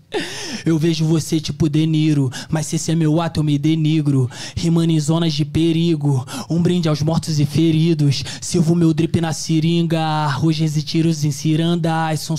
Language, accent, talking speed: Portuguese, Brazilian, 175 wpm